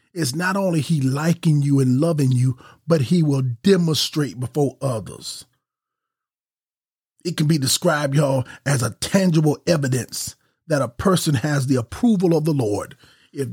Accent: American